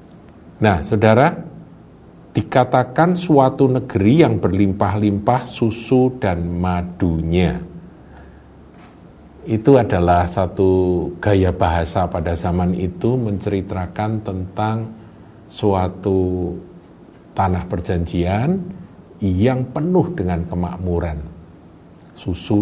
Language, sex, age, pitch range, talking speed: Indonesian, male, 50-69, 85-115 Hz, 75 wpm